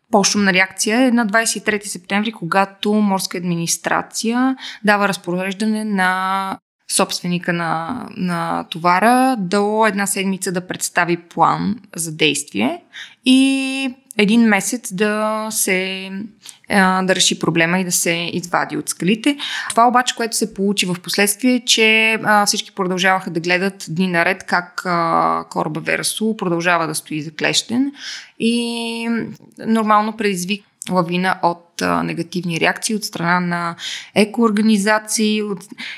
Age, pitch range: 20-39, 180-230 Hz